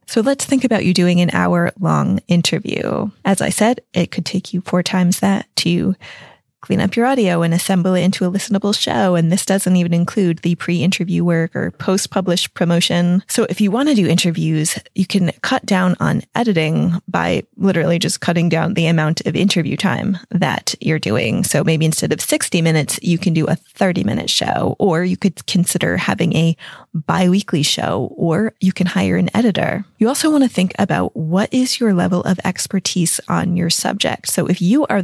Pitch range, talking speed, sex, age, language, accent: 165-195 Hz, 200 wpm, female, 20-39, English, American